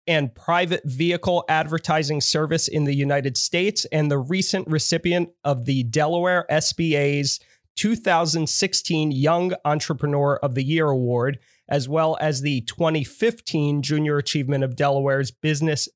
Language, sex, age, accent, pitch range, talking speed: English, male, 30-49, American, 140-170 Hz, 130 wpm